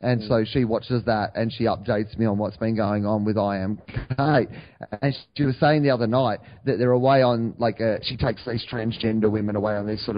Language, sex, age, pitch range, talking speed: English, male, 30-49, 115-150 Hz, 230 wpm